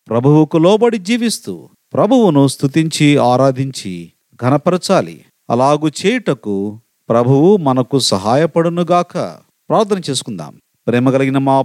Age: 40-59